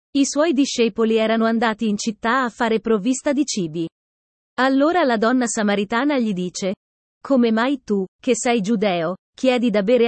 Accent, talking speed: native, 160 wpm